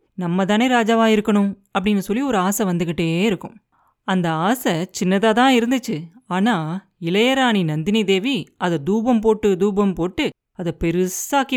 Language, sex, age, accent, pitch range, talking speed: Tamil, female, 30-49, native, 180-235 Hz, 135 wpm